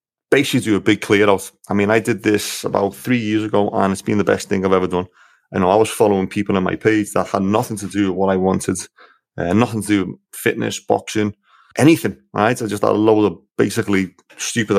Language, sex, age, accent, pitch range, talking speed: English, male, 30-49, British, 95-110 Hz, 240 wpm